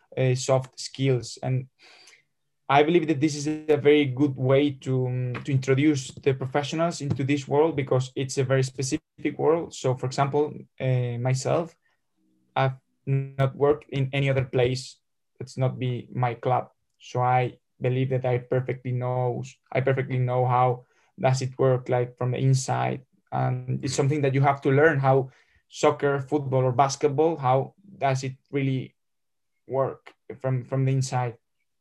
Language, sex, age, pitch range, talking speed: English, male, 20-39, 125-135 Hz, 160 wpm